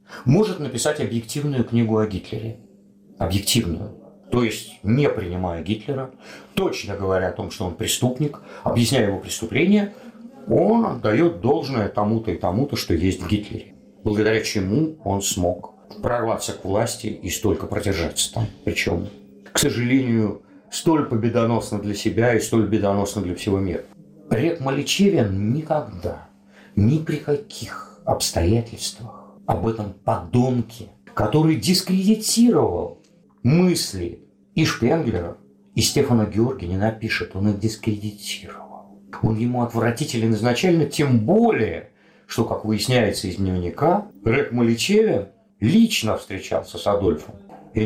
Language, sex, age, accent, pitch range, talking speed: Russian, male, 50-69, native, 105-145 Hz, 120 wpm